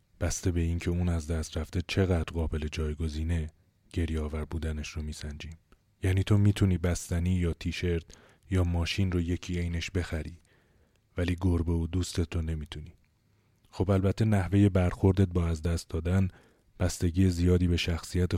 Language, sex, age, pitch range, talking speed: Persian, male, 30-49, 80-95 Hz, 145 wpm